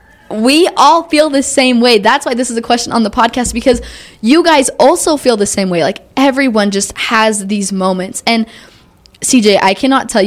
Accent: American